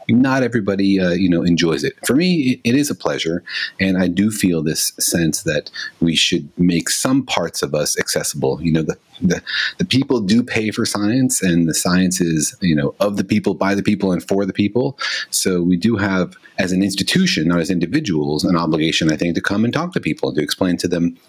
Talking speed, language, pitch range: 220 wpm, English, 85-105 Hz